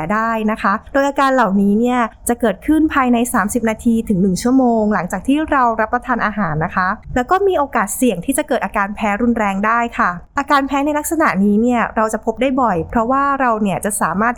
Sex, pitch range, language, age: female, 215-265 Hz, Thai, 20-39